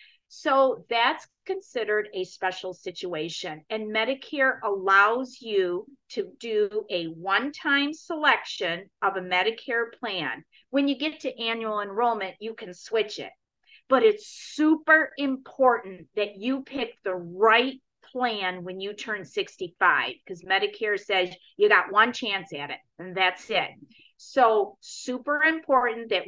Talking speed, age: 135 wpm, 40-59